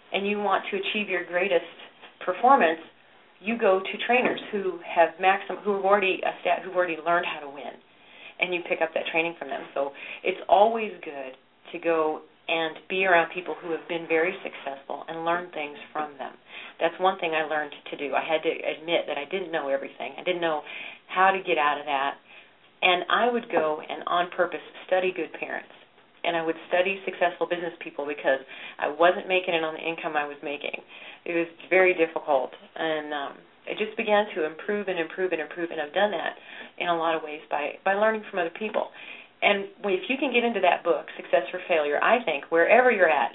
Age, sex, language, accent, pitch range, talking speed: 40-59, female, English, American, 160-190 Hz, 215 wpm